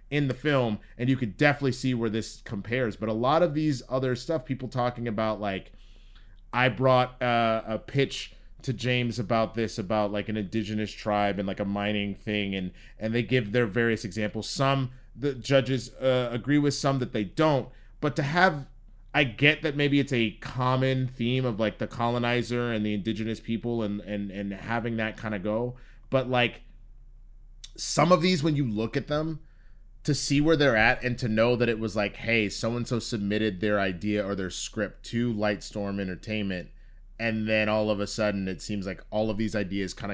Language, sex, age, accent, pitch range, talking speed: English, male, 30-49, American, 105-130 Hz, 195 wpm